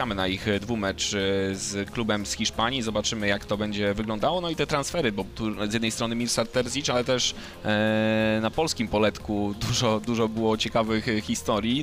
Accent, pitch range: native, 110-125 Hz